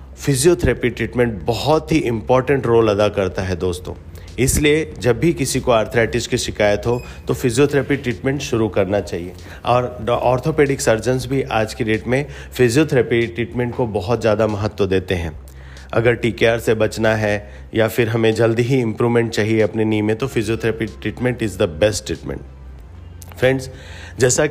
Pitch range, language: 100-125 Hz, Hindi